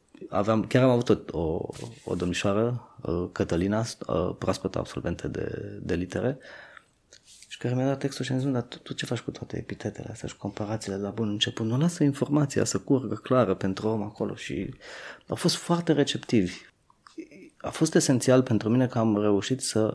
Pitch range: 100-130 Hz